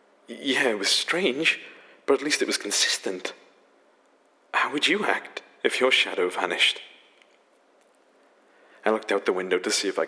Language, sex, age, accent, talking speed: English, male, 30-49, British, 160 wpm